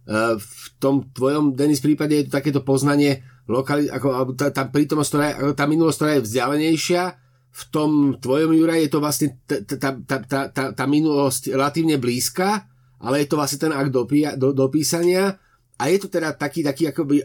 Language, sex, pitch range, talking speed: Slovak, male, 130-175 Hz, 150 wpm